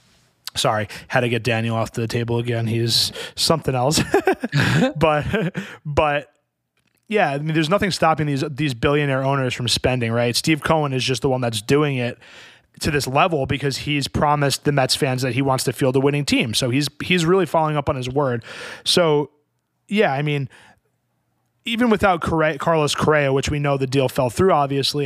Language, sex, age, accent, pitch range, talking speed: English, male, 20-39, American, 125-155 Hz, 190 wpm